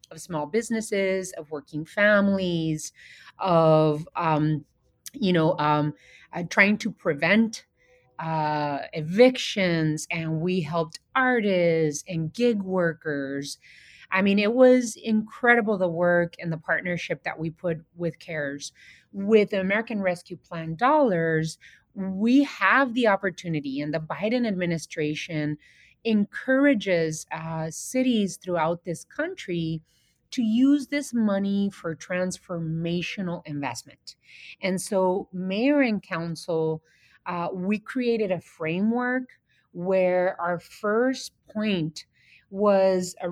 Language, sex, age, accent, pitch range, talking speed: English, female, 30-49, American, 160-210 Hz, 115 wpm